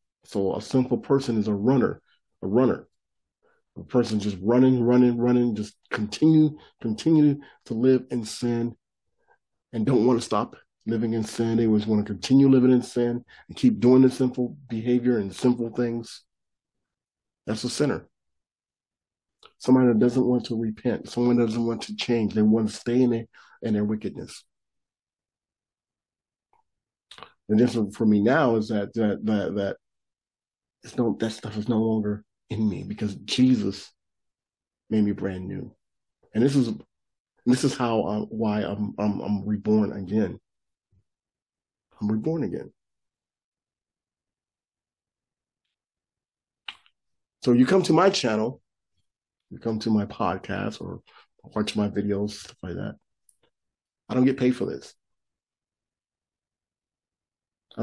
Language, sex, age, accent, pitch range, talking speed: English, male, 40-59, American, 105-125 Hz, 140 wpm